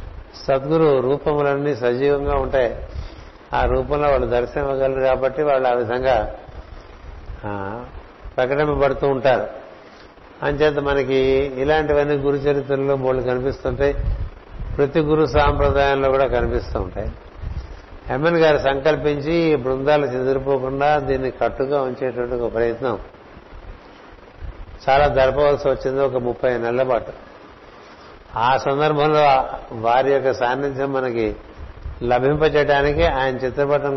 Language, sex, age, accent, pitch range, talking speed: Telugu, male, 60-79, native, 120-145 Hz, 95 wpm